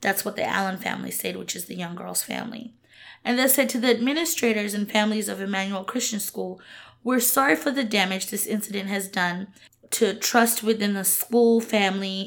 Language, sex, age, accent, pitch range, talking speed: English, female, 20-39, American, 195-235 Hz, 190 wpm